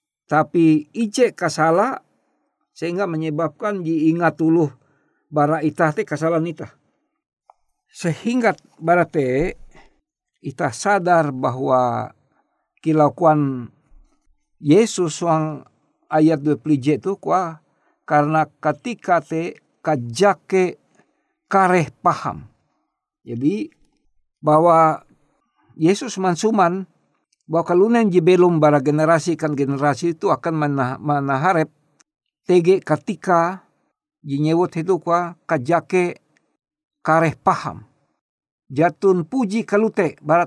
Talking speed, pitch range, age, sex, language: 85 wpm, 145-180 Hz, 50-69, male, Indonesian